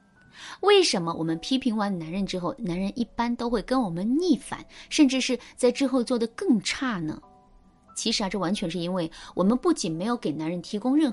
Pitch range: 180-265 Hz